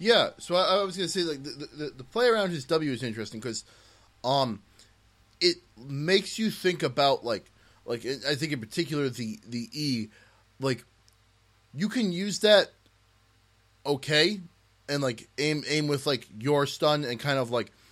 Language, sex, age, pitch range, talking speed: English, male, 20-39, 115-155 Hz, 175 wpm